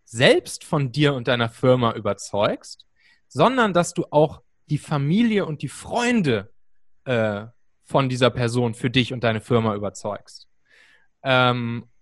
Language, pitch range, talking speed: German, 135-175 Hz, 135 wpm